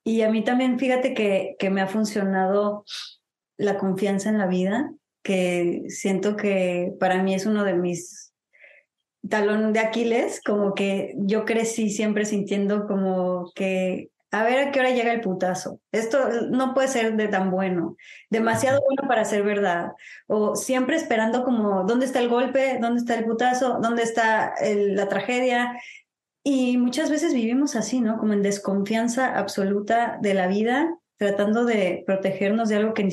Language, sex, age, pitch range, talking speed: Spanish, female, 20-39, 200-260 Hz, 165 wpm